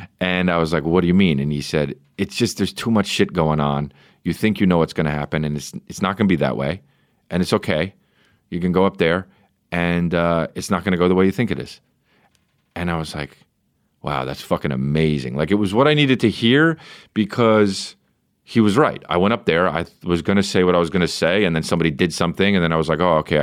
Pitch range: 80-105 Hz